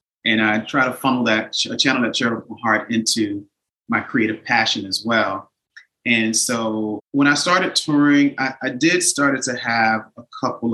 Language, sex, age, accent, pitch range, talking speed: English, male, 30-49, American, 110-130 Hz, 170 wpm